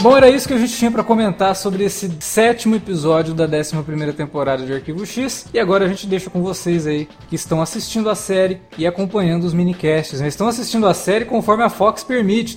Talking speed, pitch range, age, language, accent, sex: 220 wpm, 150-195 Hz, 20-39, Portuguese, Brazilian, male